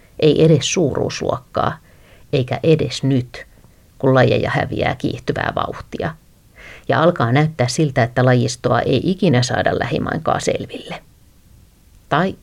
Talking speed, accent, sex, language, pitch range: 110 wpm, native, female, Finnish, 120-150 Hz